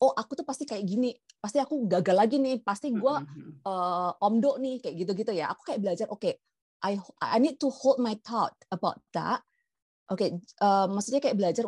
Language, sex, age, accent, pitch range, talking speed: Indonesian, female, 30-49, native, 185-250 Hz, 200 wpm